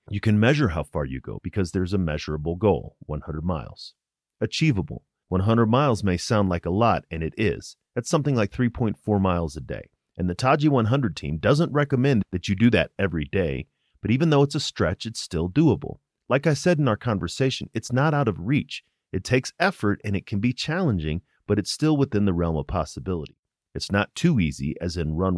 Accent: American